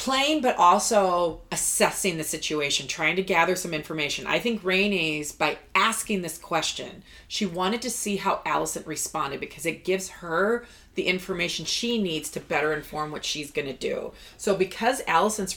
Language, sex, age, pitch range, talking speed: English, female, 30-49, 160-200 Hz, 170 wpm